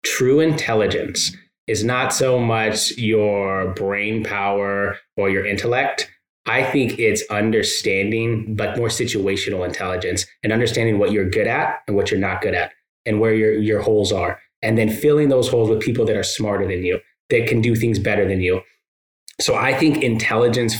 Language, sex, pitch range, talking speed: English, male, 105-130 Hz, 175 wpm